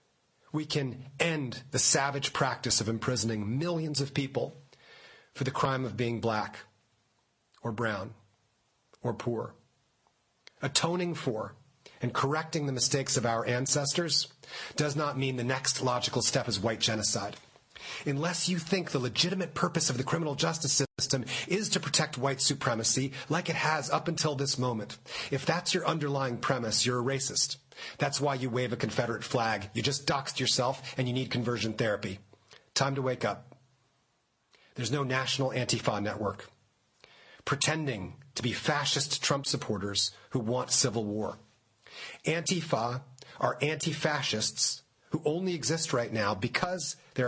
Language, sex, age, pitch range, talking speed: English, male, 40-59, 115-145 Hz, 145 wpm